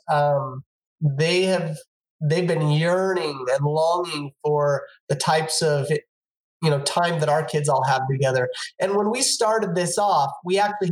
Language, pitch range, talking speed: English, 150-185 Hz, 160 wpm